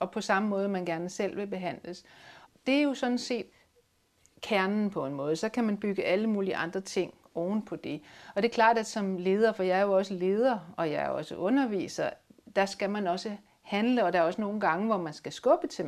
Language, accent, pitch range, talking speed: Danish, native, 170-220 Hz, 240 wpm